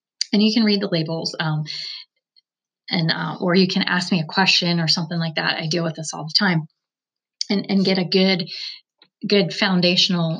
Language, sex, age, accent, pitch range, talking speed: English, female, 20-39, American, 165-200 Hz, 195 wpm